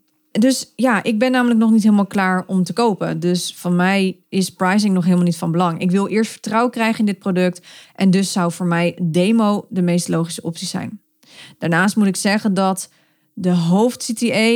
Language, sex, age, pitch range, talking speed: Dutch, female, 30-49, 180-225 Hz, 200 wpm